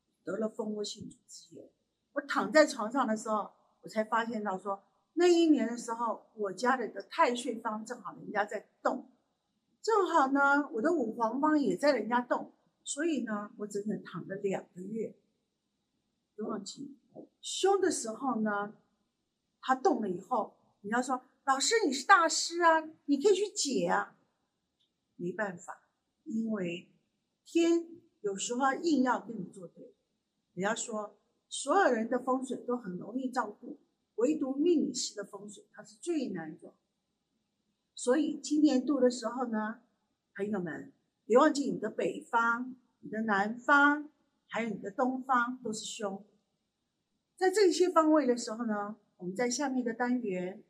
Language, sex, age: Chinese, female, 50-69